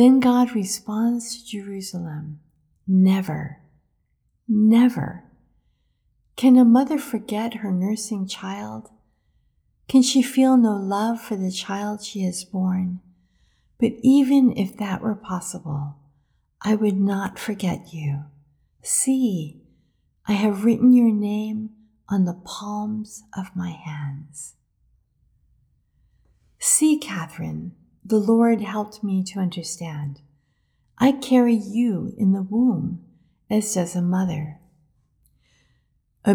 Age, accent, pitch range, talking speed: 50-69, American, 175-225 Hz, 110 wpm